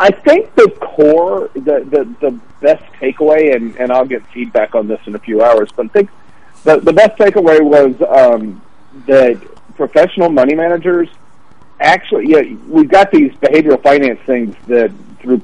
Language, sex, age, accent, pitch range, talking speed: English, male, 50-69, American, 115-150 Hz, 175 wpm